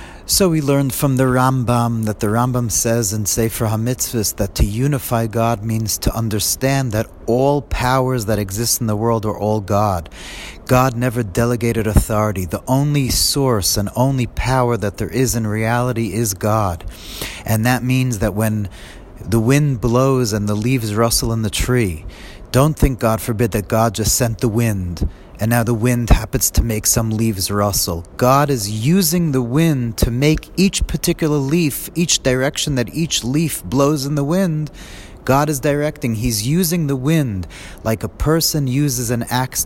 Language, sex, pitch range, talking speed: English, male, 105-130 Hz, 175 wpm